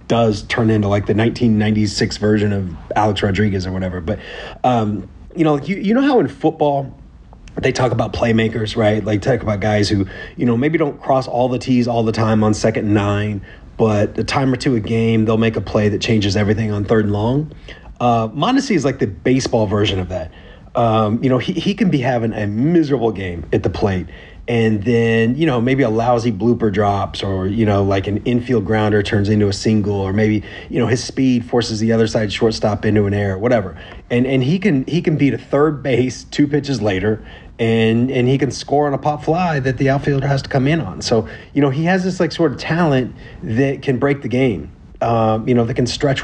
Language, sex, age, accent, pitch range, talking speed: English, male, 30-49, American, 105-135 Hz, 230 wpm